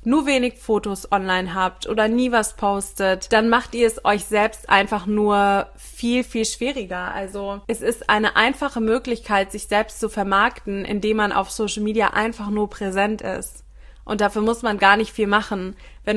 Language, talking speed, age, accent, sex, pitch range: German, 180 wpm, 20-39, German, female, 205-235 Hz